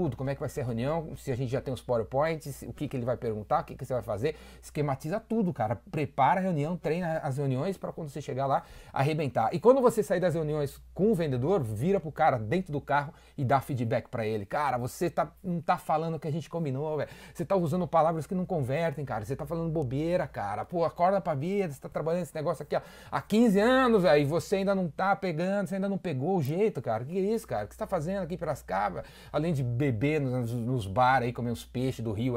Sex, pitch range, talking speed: male, 125-170 Hz, 260 wpm